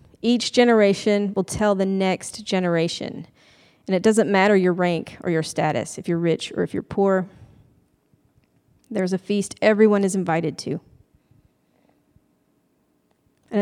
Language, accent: English, American